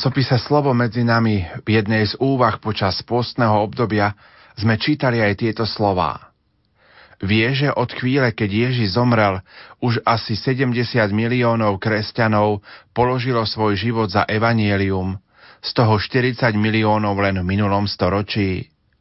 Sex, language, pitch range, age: male, Slovak, 105-120 Hz, 40-59